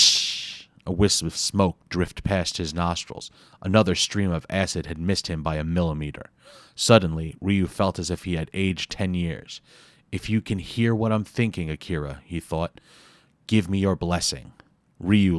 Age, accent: 30-49, American